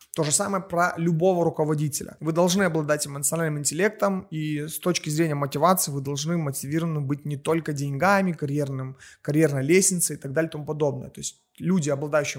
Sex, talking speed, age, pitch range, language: male, 170 wpm, 20-39, 145-180 Hz, Russian